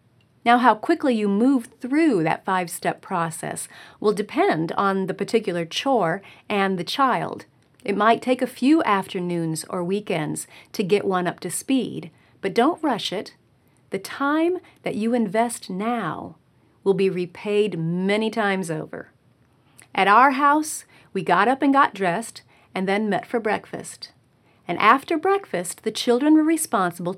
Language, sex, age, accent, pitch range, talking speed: English, female, 40-59, American, 180-245 Hz, 150 wpm